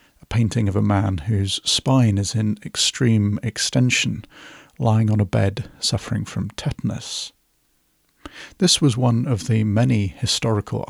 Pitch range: 105-125 Hz